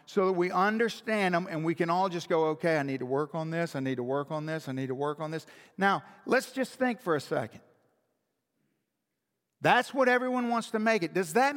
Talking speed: 240 wpm